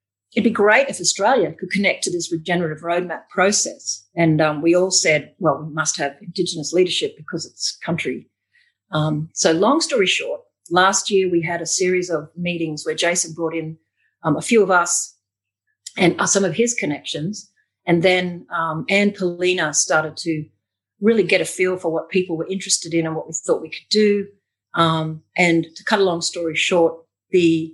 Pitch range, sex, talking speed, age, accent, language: 160-200 Hz, female, 185 wpm, 40-59, Australian, English